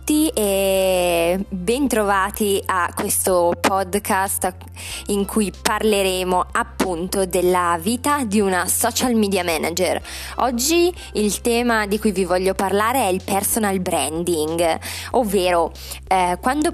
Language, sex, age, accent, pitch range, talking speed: Italian, female, 20-39, native, 185-230 Hz, 110 wpm